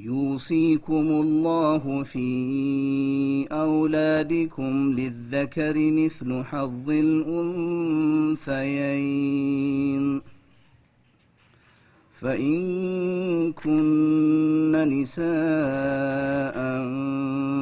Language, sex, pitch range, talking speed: Amharic, male, 135-155 Hz, 35 wpm